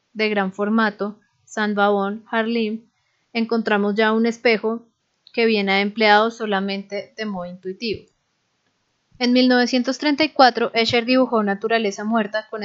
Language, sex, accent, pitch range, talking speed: Spanish, female, Colombian, 200-230 Hz, 115 wpm